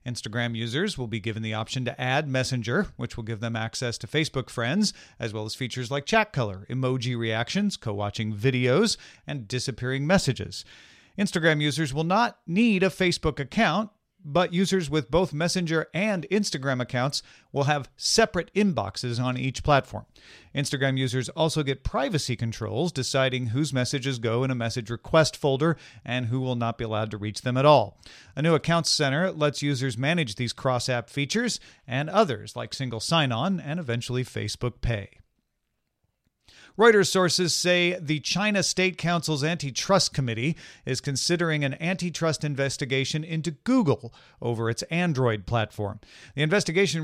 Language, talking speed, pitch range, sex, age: English, 155 wpm, 120-160 Hz, male, 40-59